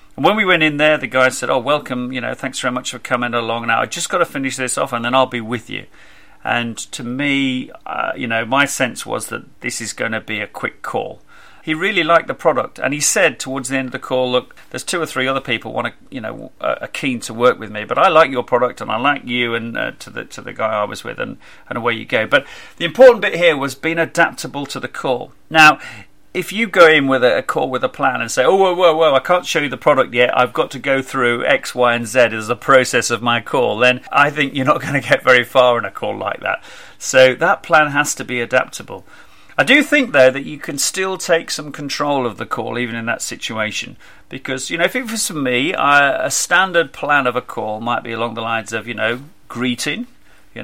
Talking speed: 260 wpm